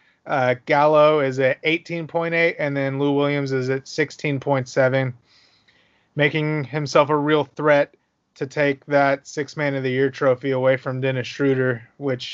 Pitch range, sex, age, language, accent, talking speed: 130-150 Hz, male, 30-49, English, American, 130 wpm